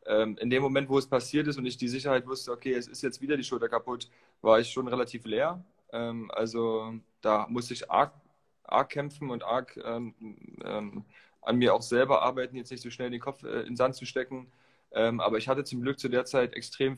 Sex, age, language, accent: male, 20-39, German, German